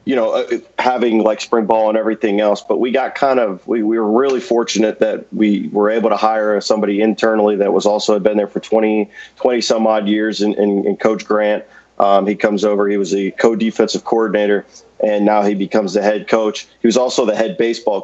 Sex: male